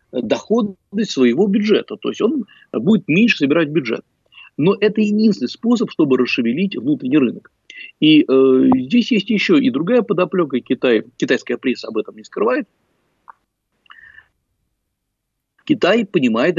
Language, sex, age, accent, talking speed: Russian, male, 50-69, native, 125 wpm